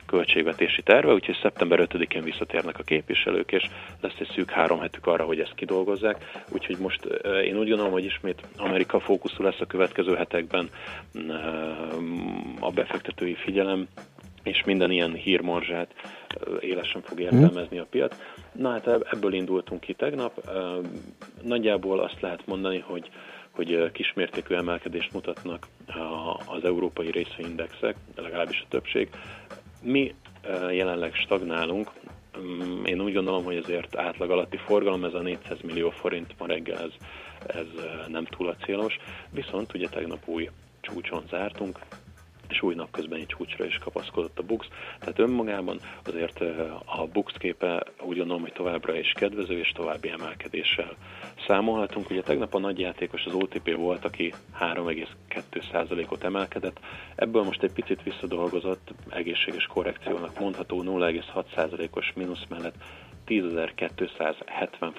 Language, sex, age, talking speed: Hungarian, male, 40-59, 130 wpm